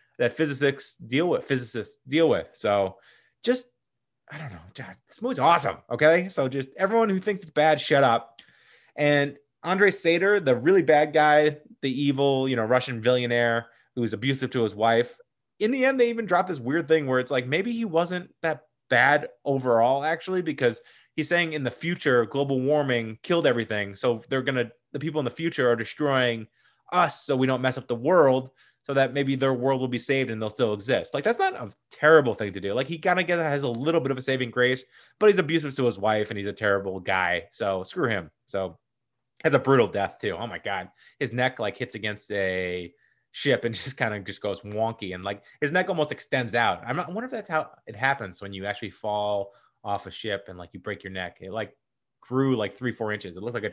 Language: English